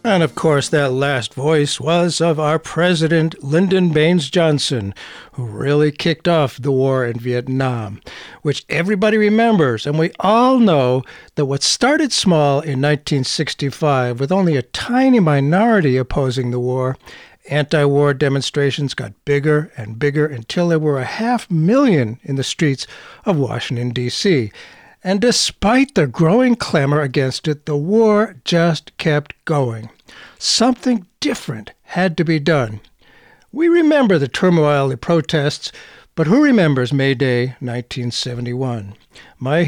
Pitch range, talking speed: 135-180 Hz, 140 wpm